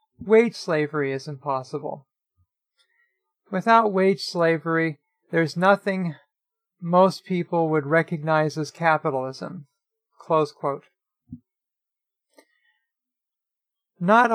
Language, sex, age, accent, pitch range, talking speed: English, male, 40-59, American, 160-215 Hz, 70 wpm